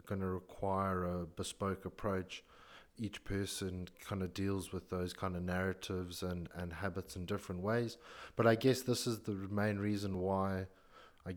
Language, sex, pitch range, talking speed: English, male, 90-100 Hz, 170 wpm